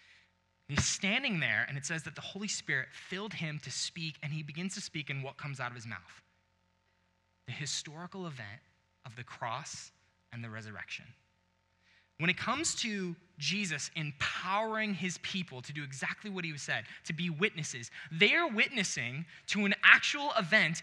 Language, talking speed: English, 175 wpm